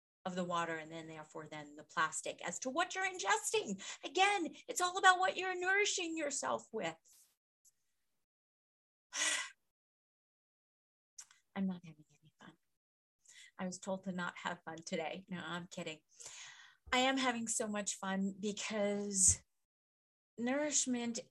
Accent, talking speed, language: American, 130 wpm, English